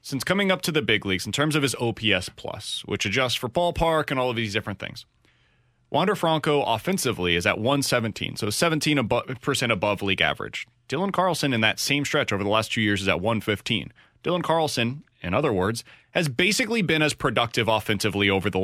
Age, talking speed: 30-49, 195 wpm